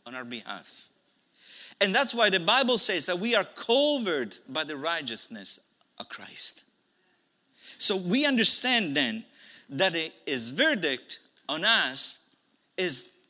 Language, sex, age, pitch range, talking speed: English, male, 50-69, 205-275 Hz, 125 wpm